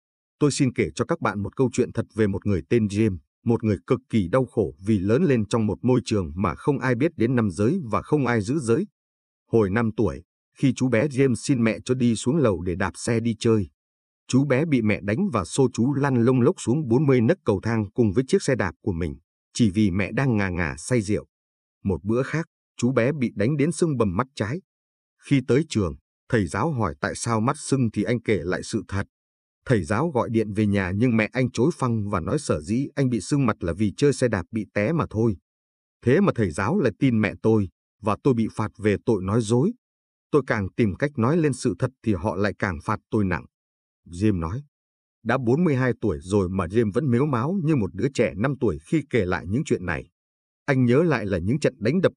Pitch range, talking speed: 95-130 Hz, 240 wpm